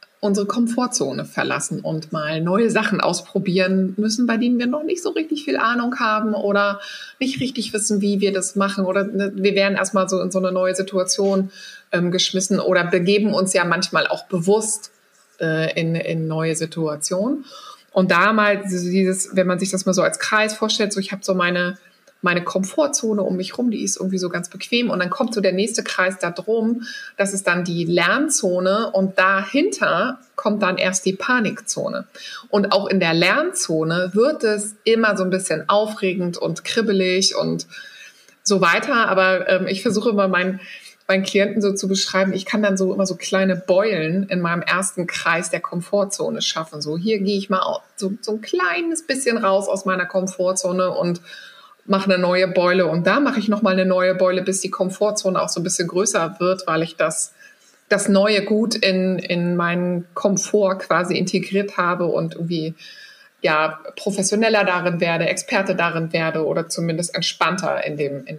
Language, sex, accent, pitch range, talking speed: German, female, German, 180-210 Hz, 180 wpm